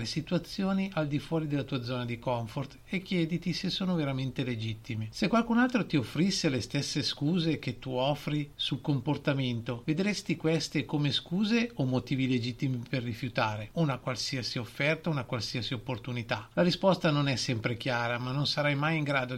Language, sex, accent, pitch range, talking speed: Italian, male, native, 125-155 Hz, 170 wpm